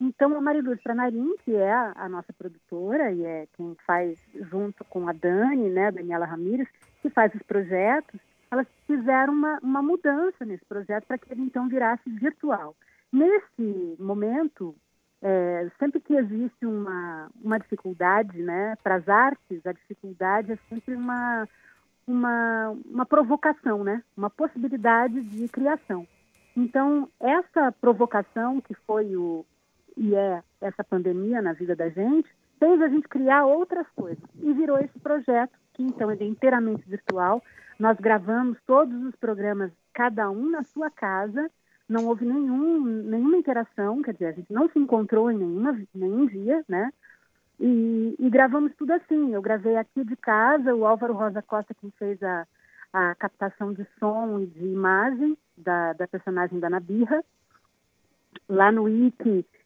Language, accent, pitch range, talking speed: Portuguese, Brazilian, 195-265 Hz, 150 wpm